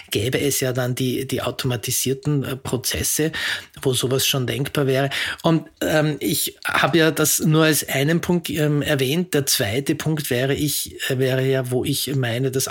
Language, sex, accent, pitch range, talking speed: German, male, Austrian, 130-150 Hz, 165 wpm